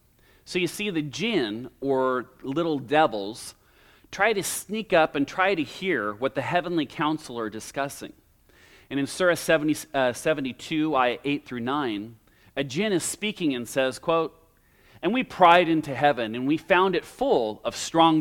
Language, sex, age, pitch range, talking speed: English, male, 40-59, 125-165 Hz, 160 wpm